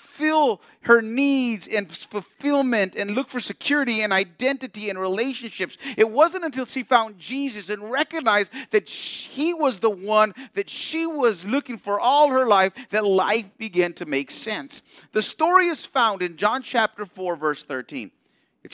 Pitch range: 180-260 Hz